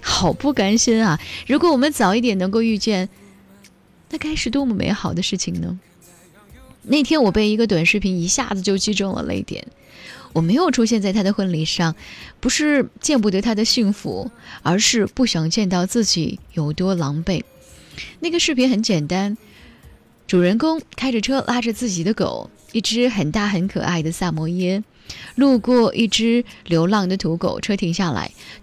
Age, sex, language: 10-29, female, Chinese